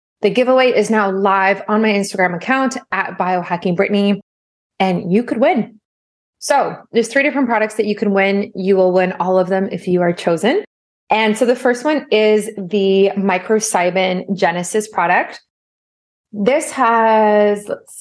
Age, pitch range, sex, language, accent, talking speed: 20-39, 185-220 Hz, female, English, American, 155 wpm